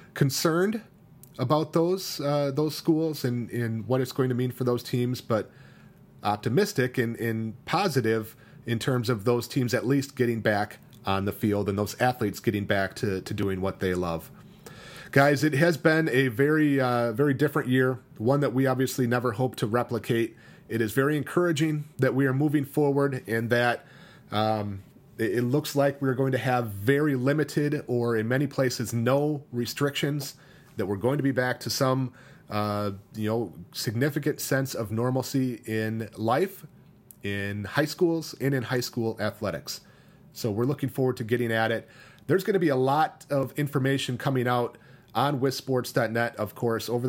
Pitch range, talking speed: 115-140 Hz, 175 wpm